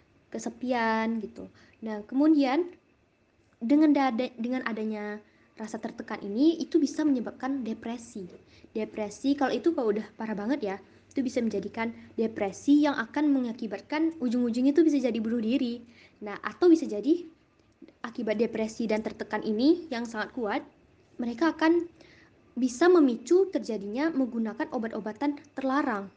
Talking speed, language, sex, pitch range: 130 wpm, Indonesian, female, 215-280 Hz